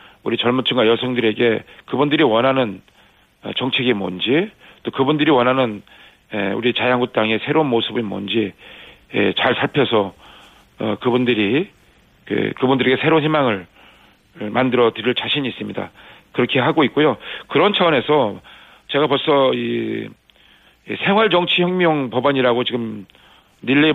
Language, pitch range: Korean, 115-145 Hz